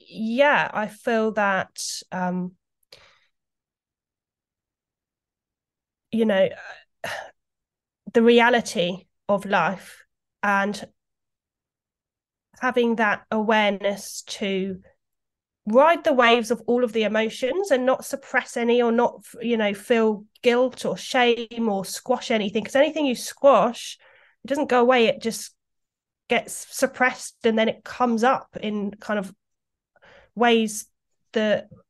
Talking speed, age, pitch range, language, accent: 115 wpm, 20-39, 200-245 Hz, English, British